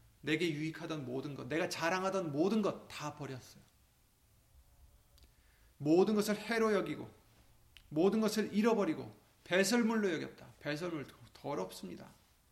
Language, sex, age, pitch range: Korean, male, 30-49, 125-195 Hz